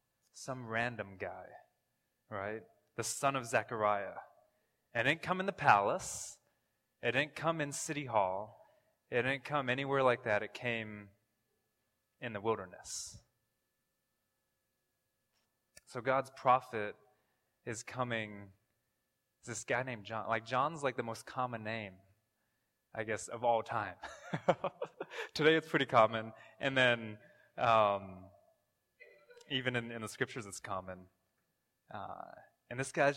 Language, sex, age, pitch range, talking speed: English, male, 20-39, 100-125 Hz, 130 wpm